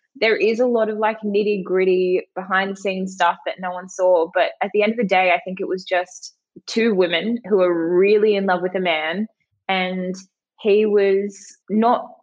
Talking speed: 205 wpm